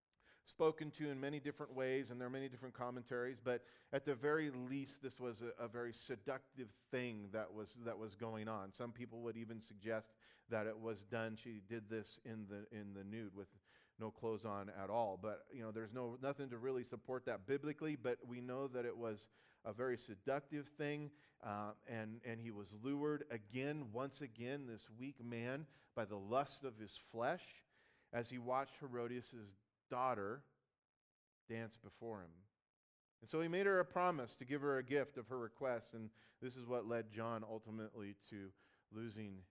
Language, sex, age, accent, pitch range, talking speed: English, male, 40-59, American, 110-135 Hz, 190 wpm